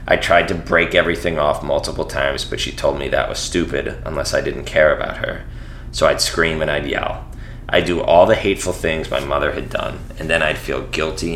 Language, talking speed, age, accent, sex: English, 220 wpm, 30-49, American, male